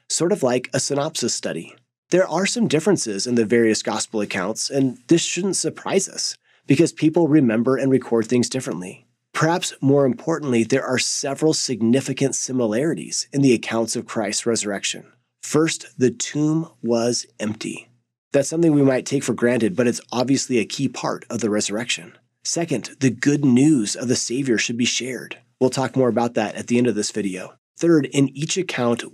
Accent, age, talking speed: American, 30-49, 180 wpm